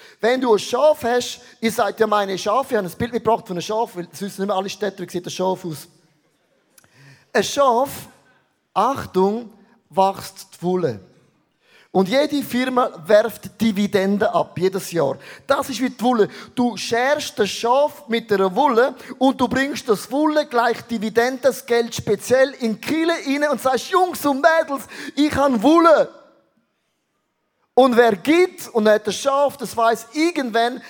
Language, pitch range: German, 200-255 Hz